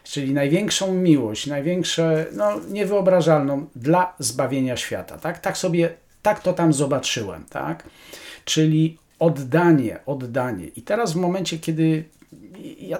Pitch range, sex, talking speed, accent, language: 120-170 Hz, male, 120 wpm, native, Polish